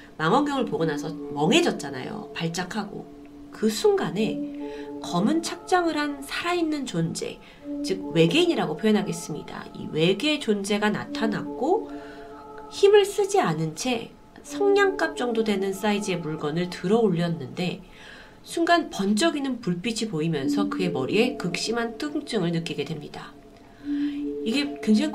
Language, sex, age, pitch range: Korean, female, 30-49, 145-245 Hz